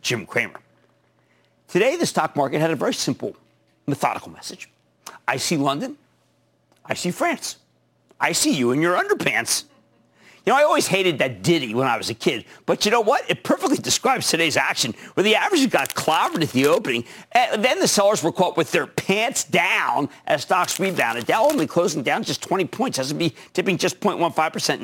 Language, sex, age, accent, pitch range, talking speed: English, male, 50-69, American, 135-205 Hz, 195 wpm